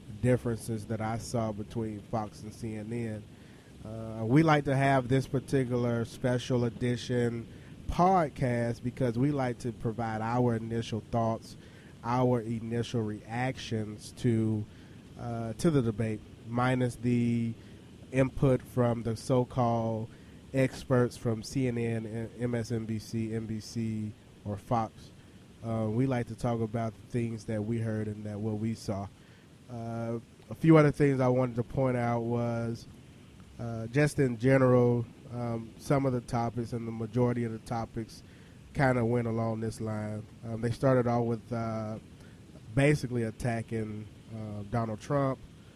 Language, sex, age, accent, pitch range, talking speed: English, male, 20-39, American, 110-125 Hz, 140 wpm